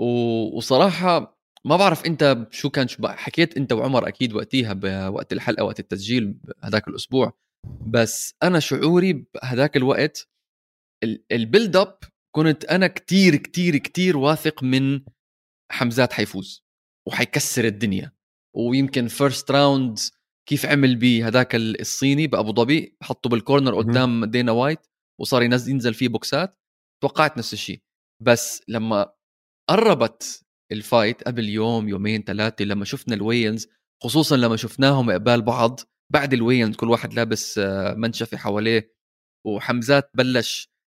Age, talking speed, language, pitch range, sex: 20-39, 125 wpm, Arabic, 110-135 Hz, male